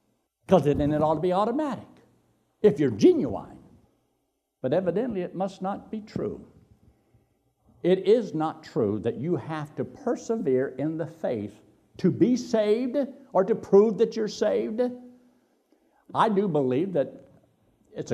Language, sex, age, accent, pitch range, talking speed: English, male, 60-79, American, 135-210 Hz, 140 wpm